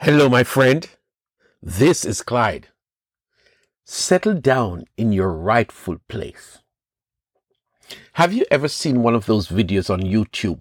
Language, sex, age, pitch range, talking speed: English, male, 50-69, 105-140 Hz, 125 wpm